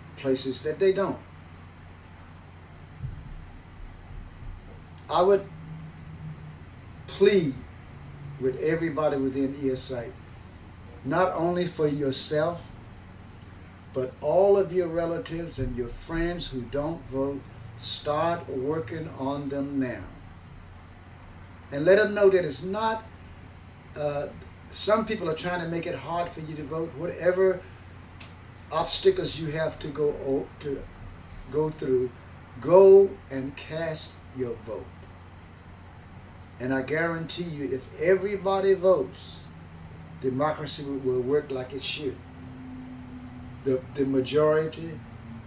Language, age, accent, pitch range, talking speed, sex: English, 60-79, American, 95-155 Hz, 105 wpm, male